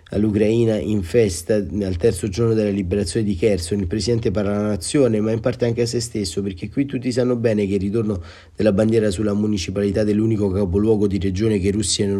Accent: native